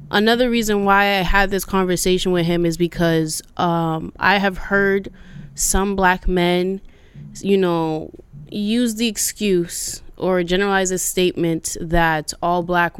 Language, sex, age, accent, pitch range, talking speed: English, female, 20-39, American, 170-205 Hz, 140 wpm